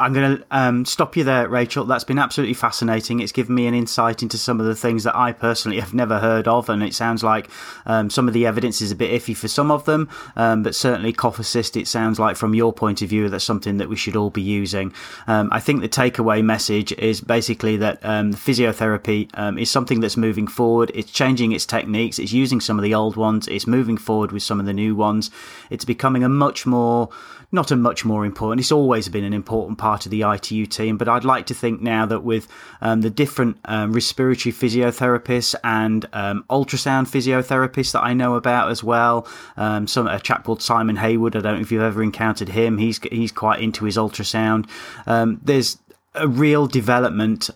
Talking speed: 220 wpm